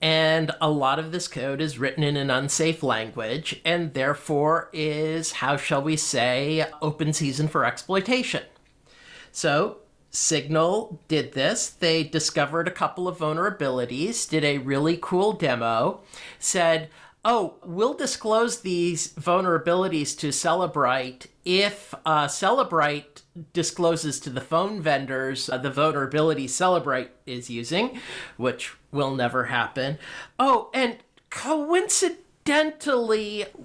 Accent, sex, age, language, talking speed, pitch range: American, male, 40-59, English, 120 wpm, 150-225 Hz